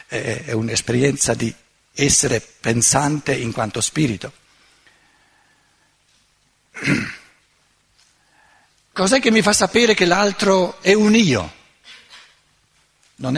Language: Italian